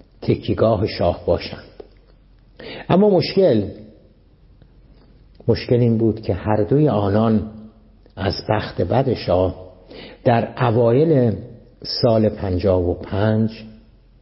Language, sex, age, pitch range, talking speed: Persian, male, 60-79, 100-125 Hz, 95 wpm